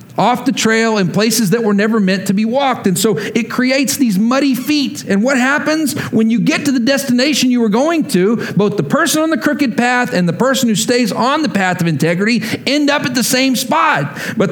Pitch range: 165-250 Hz